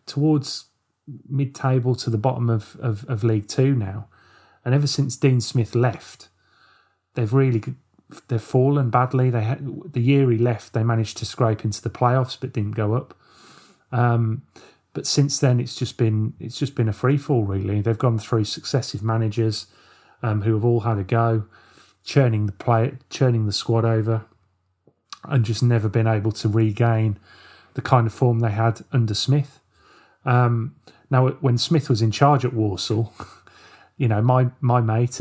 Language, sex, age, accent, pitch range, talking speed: English, male, 30-49, British, 110-130 Hz, 170 wpm